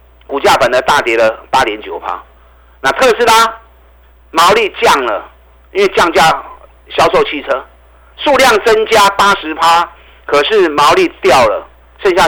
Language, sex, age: Chinese, male, 50-69